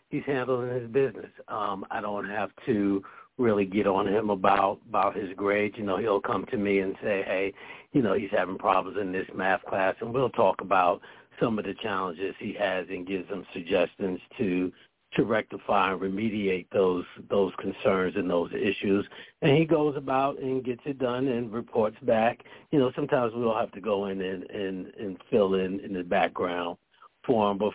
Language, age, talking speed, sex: English, 60-79, 185 wpm, male